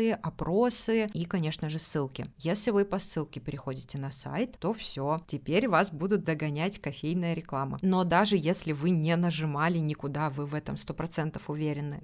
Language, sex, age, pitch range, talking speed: Russian, female, 20-39, 150-200 Hz, 160 wpm